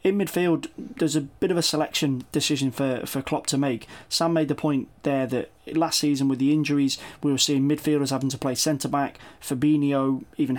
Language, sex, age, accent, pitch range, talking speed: English, male, 20-39, British, 135-150 Hz, 200 wpm